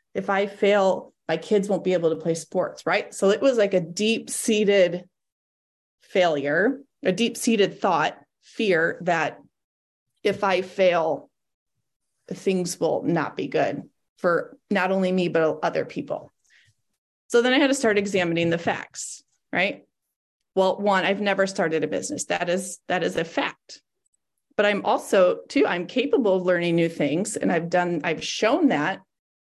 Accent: American